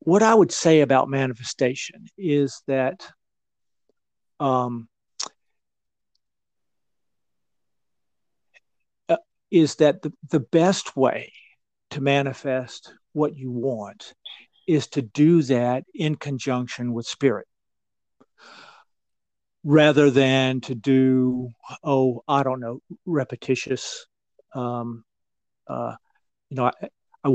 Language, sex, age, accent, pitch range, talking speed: English, male, 50-69, American, 120-145 Hz, 95 wpm